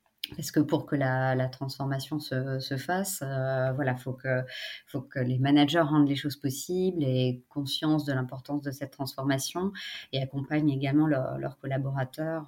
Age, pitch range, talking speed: 30-49, 135-150 Hz, 180 wpm